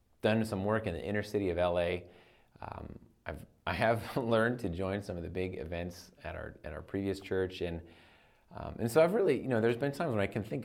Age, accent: 30-49, American